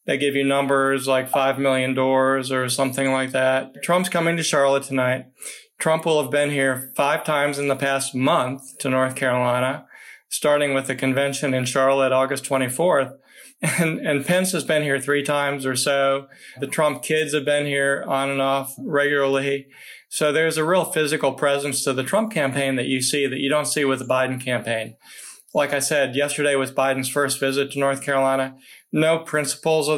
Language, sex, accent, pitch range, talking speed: English, male, American, 130-145 Hz, 190 wpm